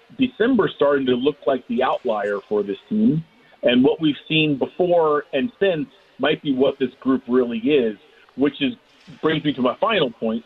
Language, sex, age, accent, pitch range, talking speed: English, male, 40-59, American, 130-180 Hz, 185 wpm